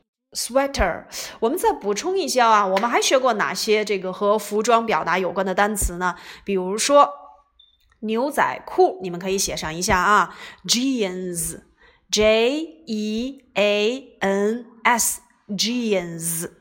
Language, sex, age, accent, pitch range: Chinese, female, 30-49, native, 200-265 Hz